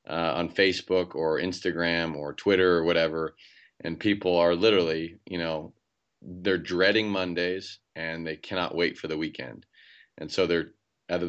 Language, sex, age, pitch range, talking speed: English, male, 30-49, 85-100 Hz, 160 wpm